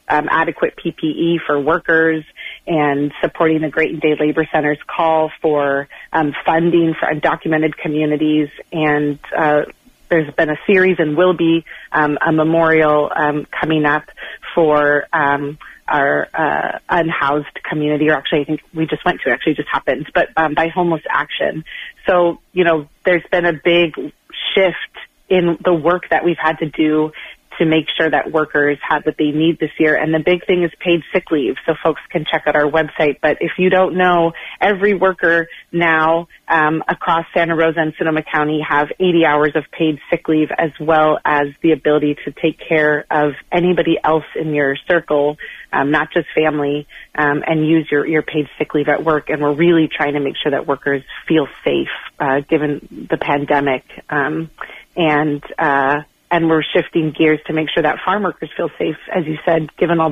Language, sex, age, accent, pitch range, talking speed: English, female, 30-49, American, 150-165 Hz, 185 wpm